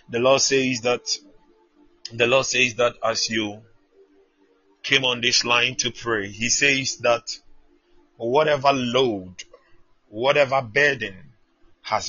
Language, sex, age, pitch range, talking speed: English, male, 30-49, 95-120 Hz, 120 wpm